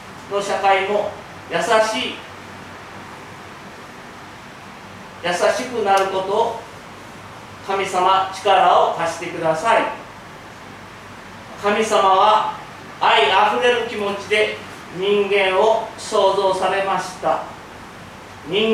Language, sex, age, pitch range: Japanese, male, 40-59, 185-215 Hz